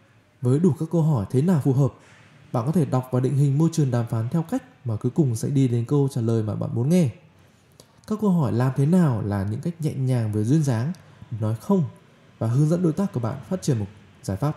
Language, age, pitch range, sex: Vietnamese, 20-39, 120-160 Hz, male